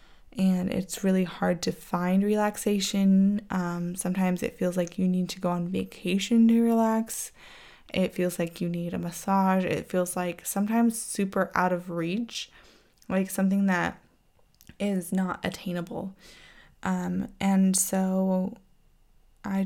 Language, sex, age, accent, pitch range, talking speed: English, female, 10-29, American, 180-195 Hz, 135 wpm